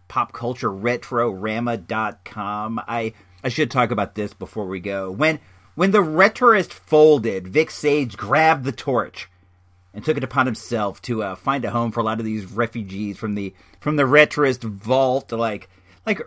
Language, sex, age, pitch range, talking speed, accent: English, male, 40-59, 105-150 Hz, 160 wpm, American